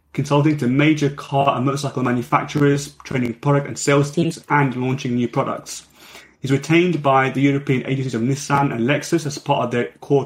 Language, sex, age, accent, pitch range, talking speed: English, male, 30-49, British, 125-145 Hz, 180 wpm